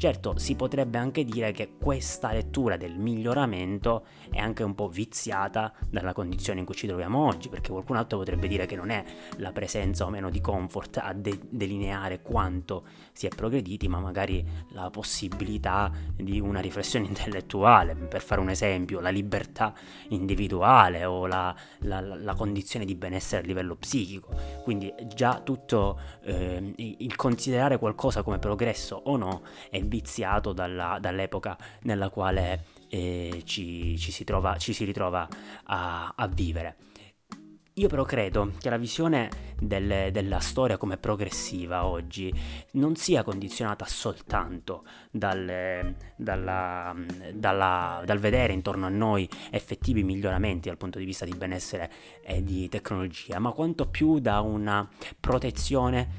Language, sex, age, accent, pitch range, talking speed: Italian, male, 20-39, native, 90-110 Hz, 140 wpm